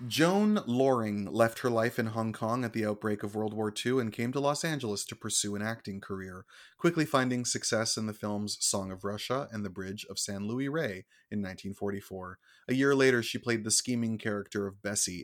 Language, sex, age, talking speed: English, male, 30-49, 210 wpm